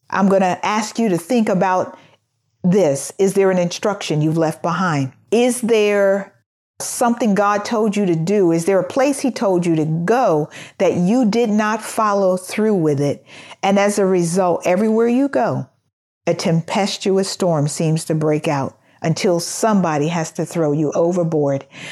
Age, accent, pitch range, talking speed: 50-69, American, 160-215 Hz, 170 wpm